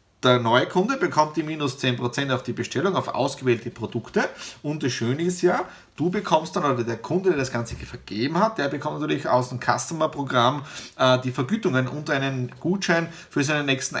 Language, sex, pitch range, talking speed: German, male, 125-165 Hz, 190 wpm